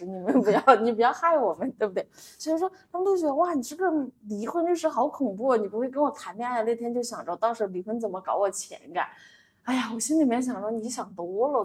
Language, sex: Chinese, female